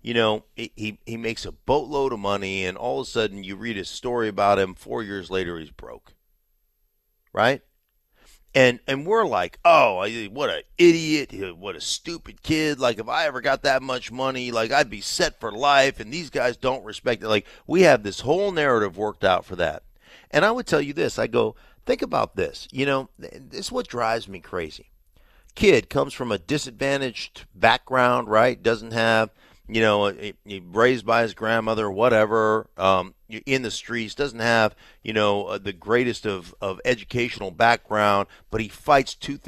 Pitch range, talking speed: 100-130 Hz, 185 wpm